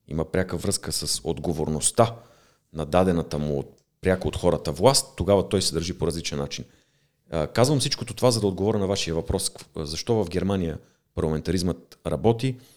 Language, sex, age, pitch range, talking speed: Bulgarian, male, 40-59, 80-100 Hz, 165 wpm